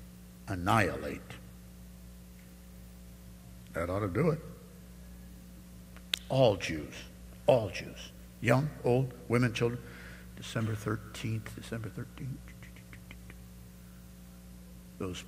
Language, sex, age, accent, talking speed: English, male, 60-79, American, 75 wpm